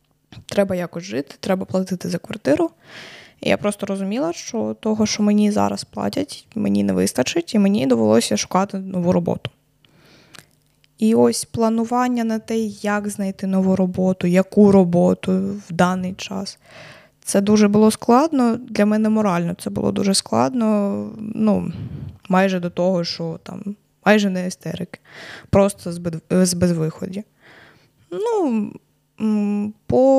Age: 20-39